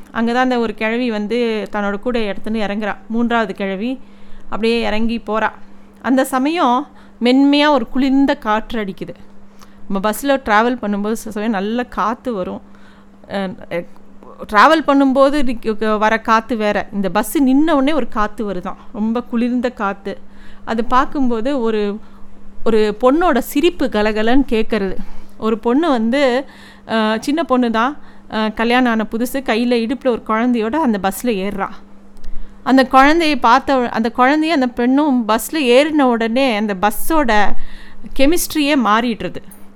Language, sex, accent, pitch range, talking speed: Tamil, female, native, 215-265 Hz, 125 wpm